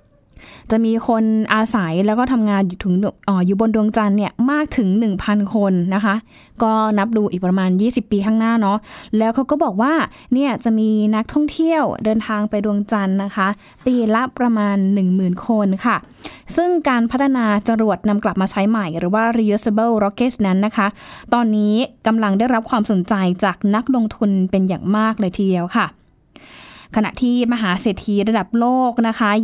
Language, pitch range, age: Thai, 205-245 Hz, 10-29